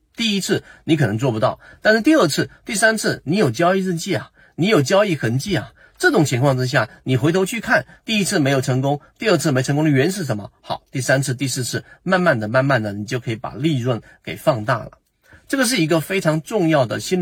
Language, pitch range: Chinese, 125-180 Hz